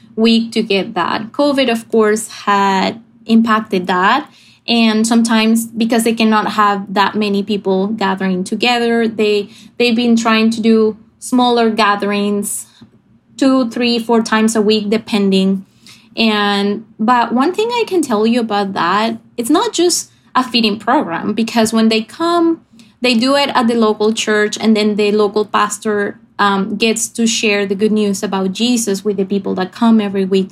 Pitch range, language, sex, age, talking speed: 210-245 Hz, English, female, 20-39, 165 wpm